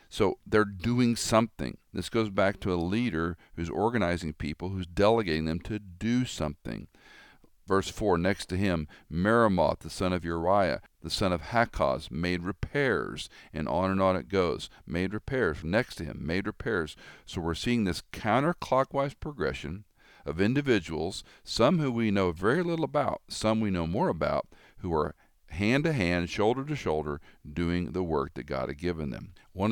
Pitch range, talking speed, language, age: 80-105 Hz, 165 wpm, English, 50-69